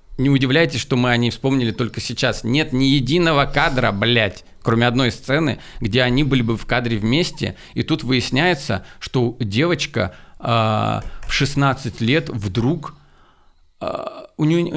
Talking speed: 140 wpm